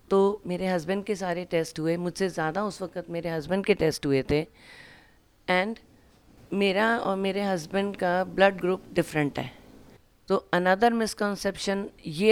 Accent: native